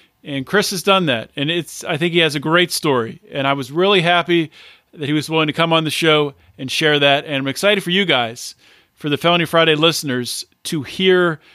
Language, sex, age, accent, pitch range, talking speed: English, male, 40-59, American, 135-175 Hz, 230 wpm